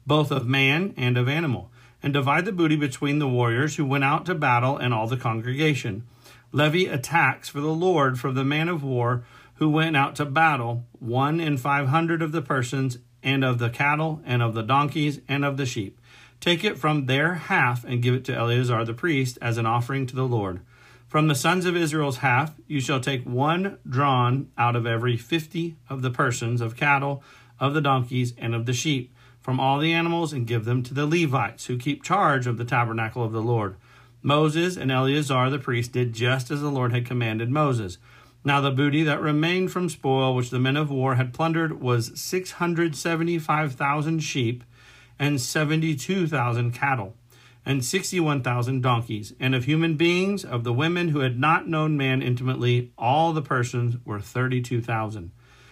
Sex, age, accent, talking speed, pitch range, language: male, 40-59, American, 190 wpm, 120-155 Hz, English